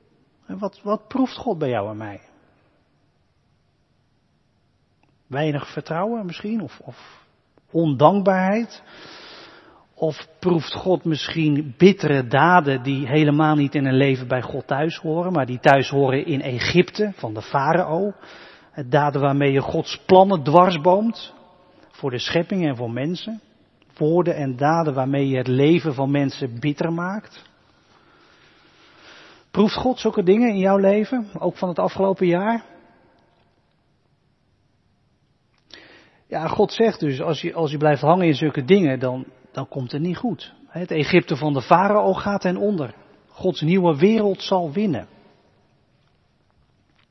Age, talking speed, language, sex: 40-59, 135 wpm, Dutch, male